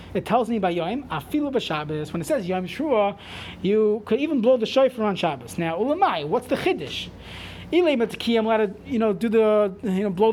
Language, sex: English, male